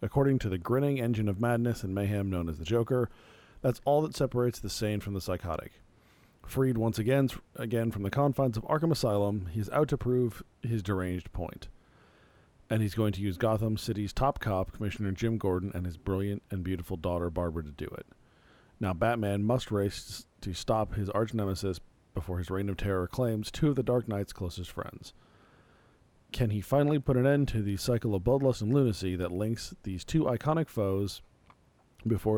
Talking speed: 190 wpm